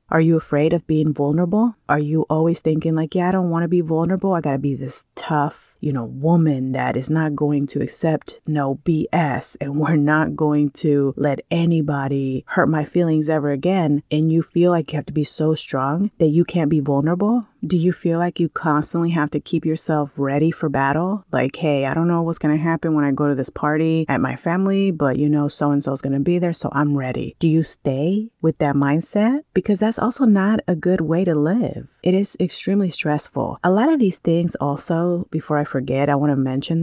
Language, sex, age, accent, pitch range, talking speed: English, female, 30-49, American, 145-180 Hz, 225 wpm